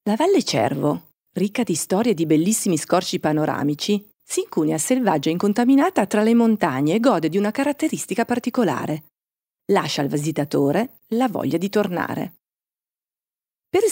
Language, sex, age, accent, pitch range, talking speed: Italian, female, 40-59, native, 160-235 Hz, 140 wpm